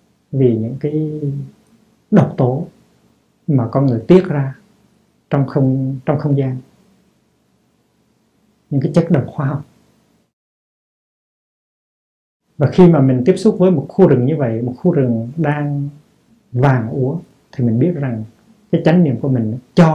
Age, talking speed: 60-79, 145 wpm